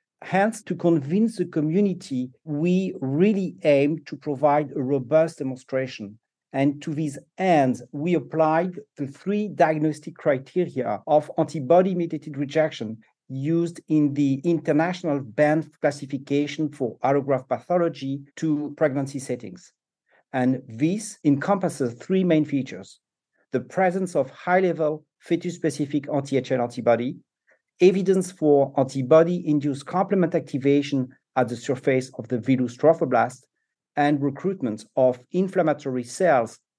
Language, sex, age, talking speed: English, male, 50-69, 110 wpm